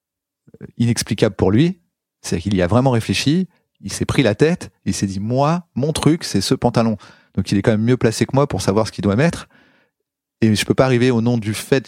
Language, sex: French, male